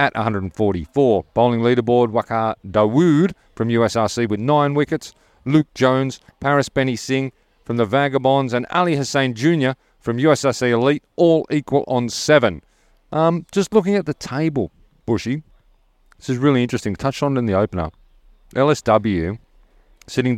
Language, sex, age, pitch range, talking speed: English, male, 40-59, 95-130 Hz, 145 wpm